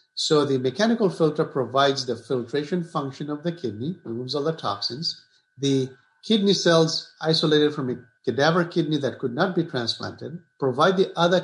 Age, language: 50-69, English